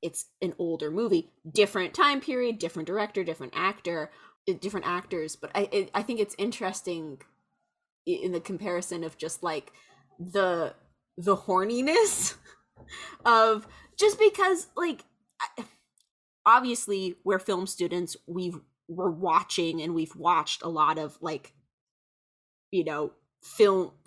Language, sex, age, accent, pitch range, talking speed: English, female, 20-39, American, 170-220 Hz, 120 wpm